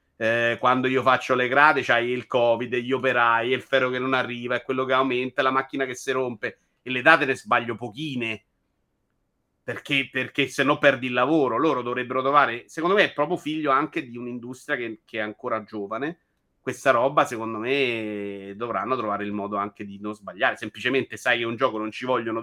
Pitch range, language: 115-135 Hz, Italian